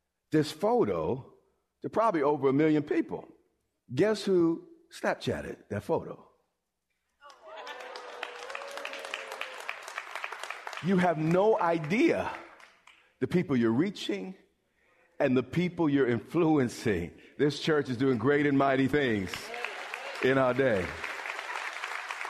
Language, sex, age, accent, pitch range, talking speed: English, male, 50-69, American, 130-180 Hz, 100 wpm